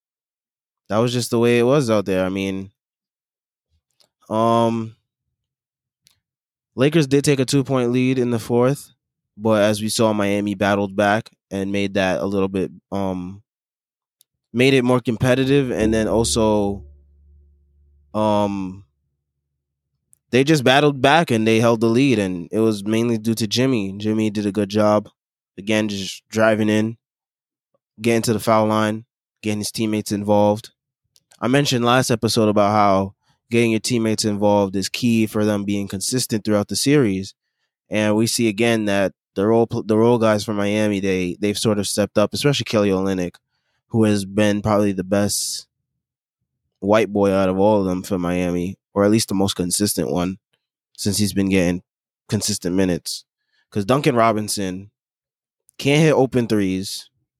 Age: 20-39